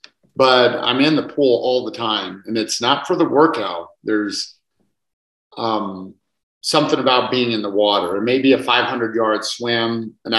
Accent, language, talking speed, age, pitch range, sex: American, English, 160 wpm, 50-69, 105-125 Hz, male